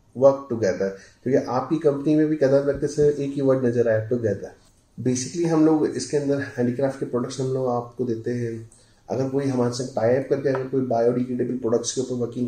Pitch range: 125-155 Hz